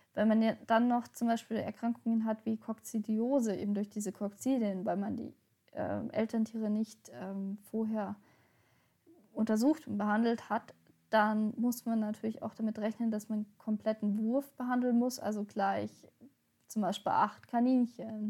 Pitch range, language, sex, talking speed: 210-235 Hz, German, female, 150 wpm